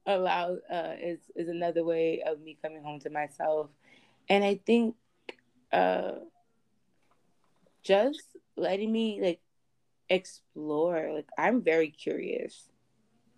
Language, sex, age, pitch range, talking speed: English, female, 20-39, 155-195 Hz, 110 wpm